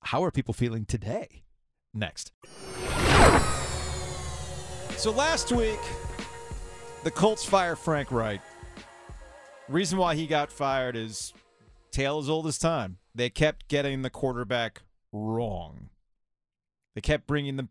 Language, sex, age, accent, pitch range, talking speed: English, male, 30-49, American, 100-135 Hz, 120 wpm